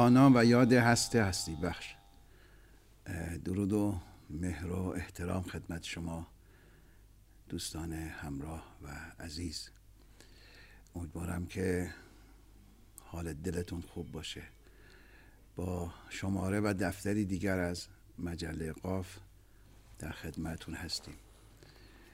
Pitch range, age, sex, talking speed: 85-105 Hz, 60-79, male, 90 wpm